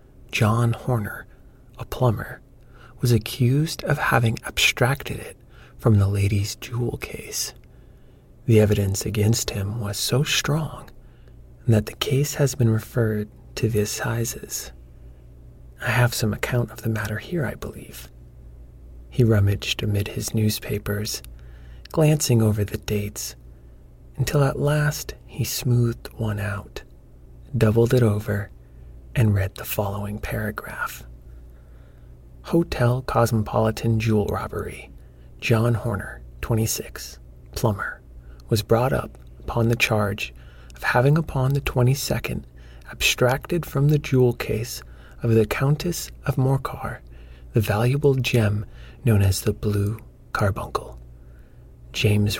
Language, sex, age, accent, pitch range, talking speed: English, male, 30-49, American, 90-125 Hz, 120 wpm